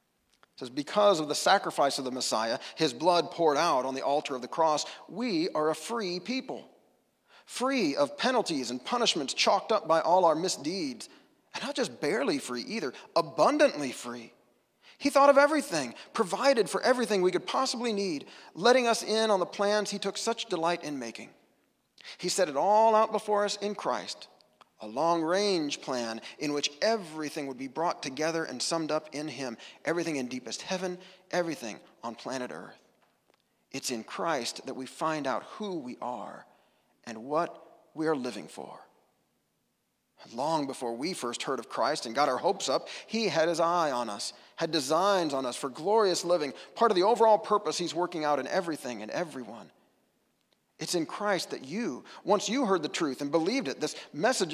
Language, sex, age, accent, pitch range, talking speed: English, male, 40-59, American, 145-215 Hz, 180 wpm